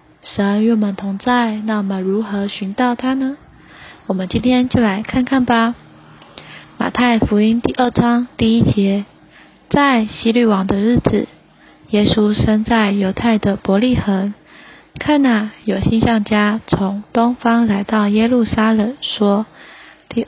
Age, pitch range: 20-39, 205-245 Hz